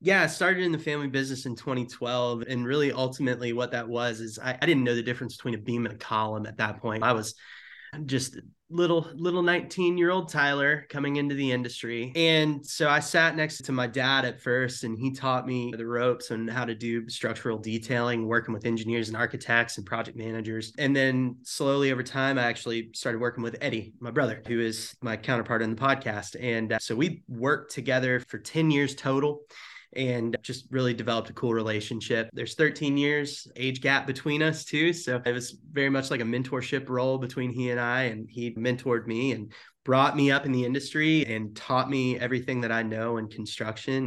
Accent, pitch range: American, 115-135 Hz